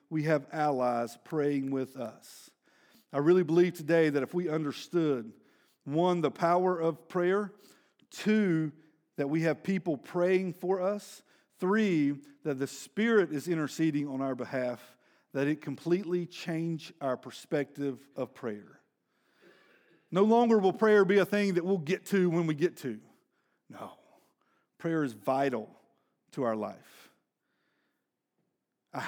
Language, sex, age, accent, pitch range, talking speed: English, male, 50-69, American, 140-180 Hz, 140 wpm